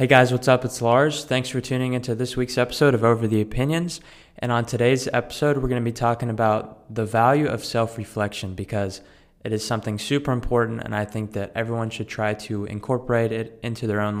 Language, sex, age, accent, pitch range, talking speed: English, male, 20-39, American, 105-120 Hz, 215 wpm